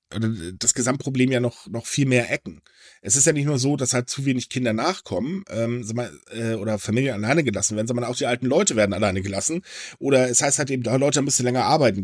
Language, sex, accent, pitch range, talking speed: German, male, German, 100-135 Hz, 235 wpm